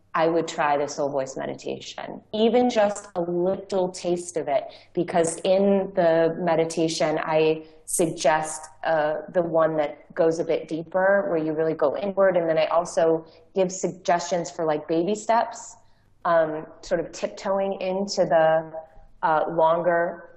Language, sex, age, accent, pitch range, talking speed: English, female, 20-39, American, 155-185 Hz, 150 wpm